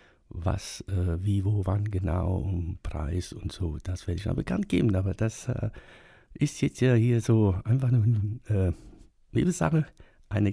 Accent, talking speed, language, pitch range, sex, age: German, 165 wpm, German, 90-115 Hz, male, 60-79